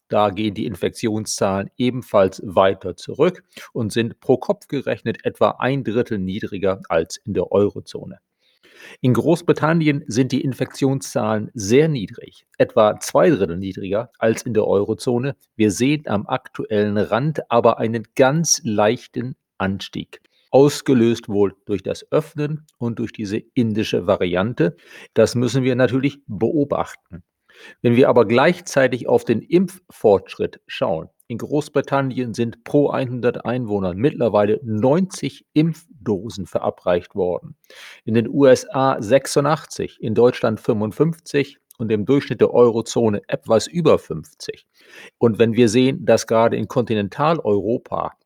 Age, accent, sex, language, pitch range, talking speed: 40-59, German, male, German, 110-135 Hz, 125 wpm